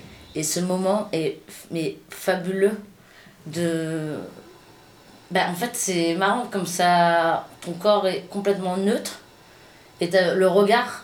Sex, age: female, 20-39